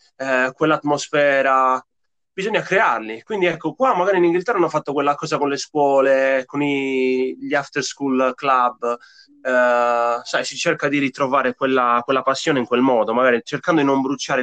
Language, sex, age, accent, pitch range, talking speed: Italian, male, 20-39, native, 120-145 Hz, 160 wpm